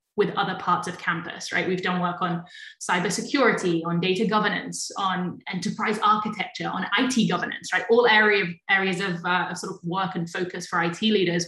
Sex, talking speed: female, 180 wpm